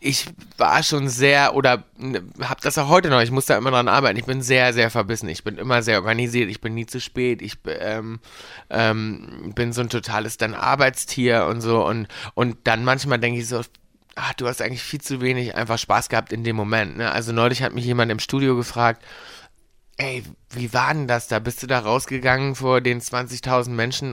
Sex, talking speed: male, 215 wpm